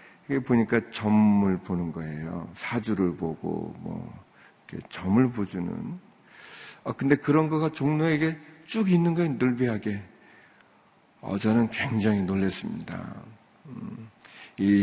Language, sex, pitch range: Korean, male, 95-140 Hz